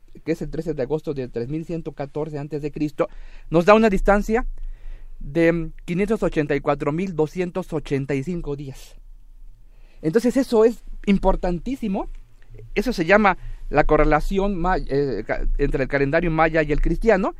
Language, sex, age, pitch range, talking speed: Spanish, male, 40-59, 150-210 Hz, 110 wpm